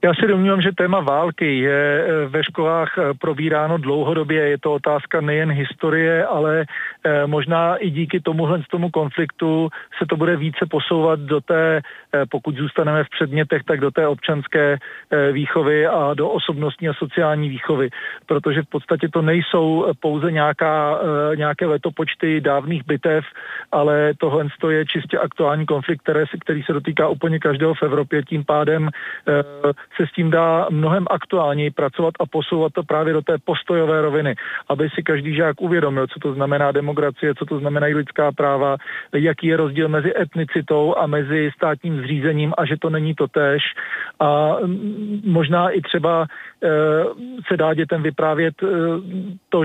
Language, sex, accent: Czech, male, native